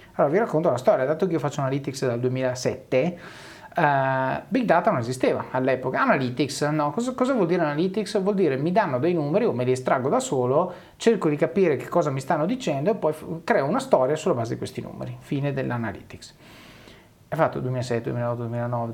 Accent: native